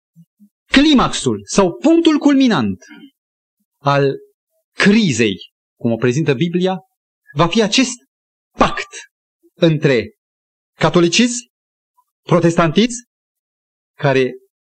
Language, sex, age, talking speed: Romanian, male, 30-49, 75 wpm